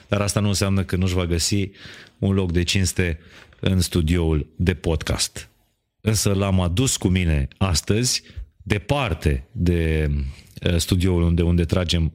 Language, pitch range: Romanian, 85-105 Hz